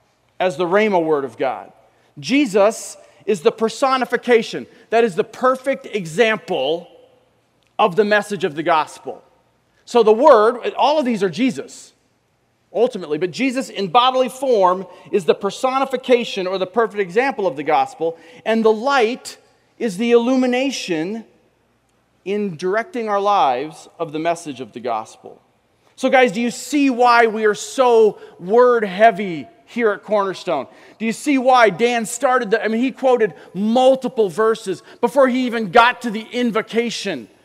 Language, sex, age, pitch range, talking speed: English, male, 40-59, 185-245 Hz, 150 wpm